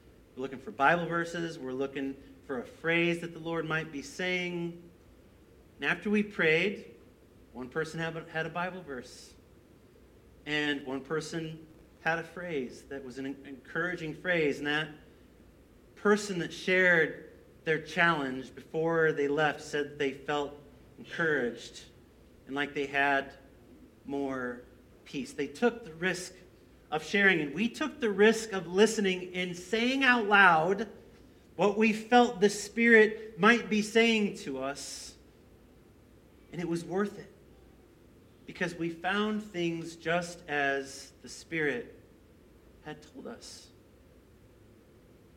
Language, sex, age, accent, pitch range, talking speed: English, male, 40-59, American, 135-180 Hz, 130 wpm